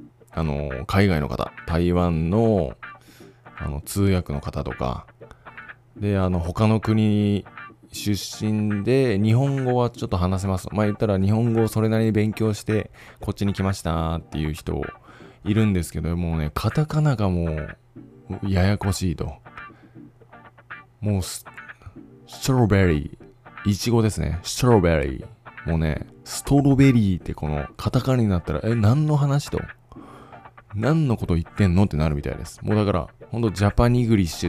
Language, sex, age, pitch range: Japanese, male, 20-39, 85-120 Hz